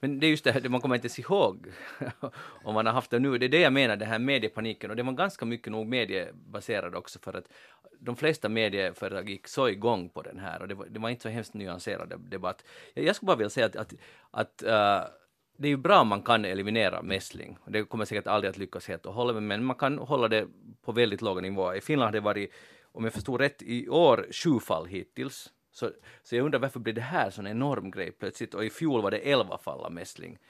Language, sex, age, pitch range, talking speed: Swedish, male, 30-49, 110-130 Hz, 255 wpm